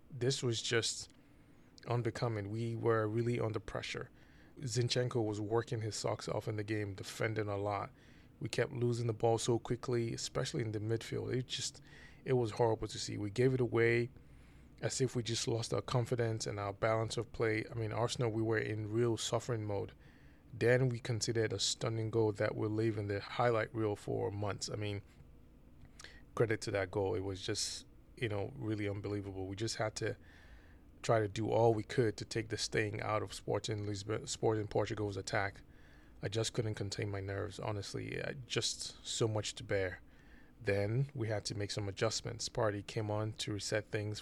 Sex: male